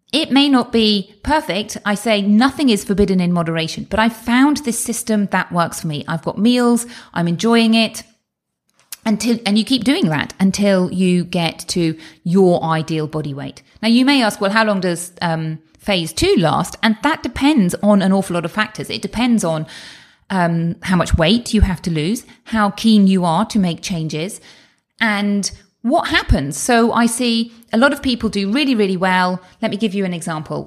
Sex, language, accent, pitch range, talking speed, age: female, English, British, 175-235 Hz, 195 wpm, 30-49